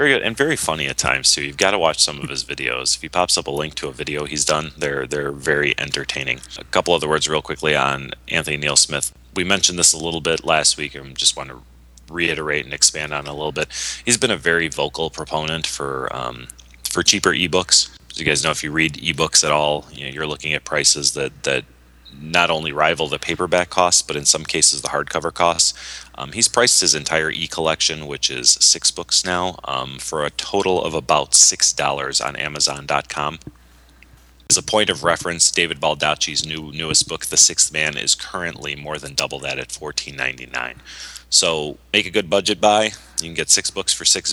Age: 30-49